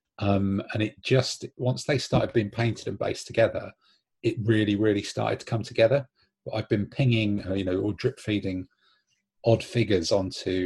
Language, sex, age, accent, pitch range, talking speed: English, male, 30-49, British, 100-115 Hz, 175 wpm